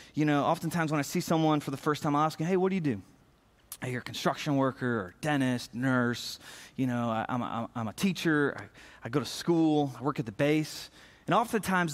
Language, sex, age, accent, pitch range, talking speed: English, male, 30-49, American, 135-170 Hz, 245 wpm